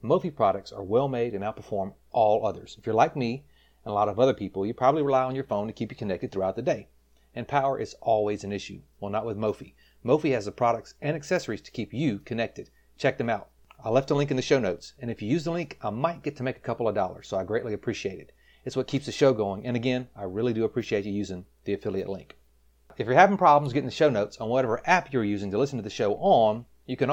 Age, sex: 40-59, male